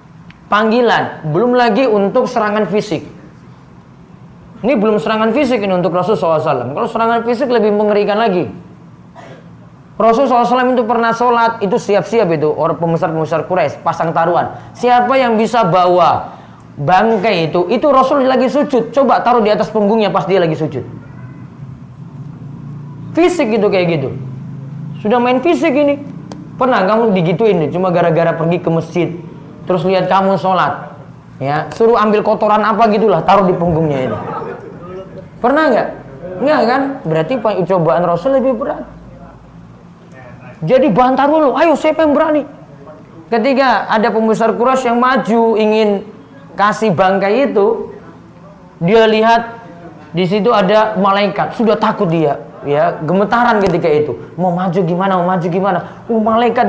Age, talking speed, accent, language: 20-39, 140 wpm, native, Indonesian